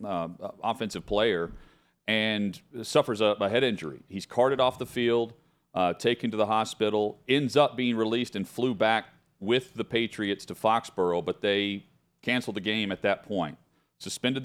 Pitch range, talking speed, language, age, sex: 95-115 Hz, 165 wpm, English, 40-59, male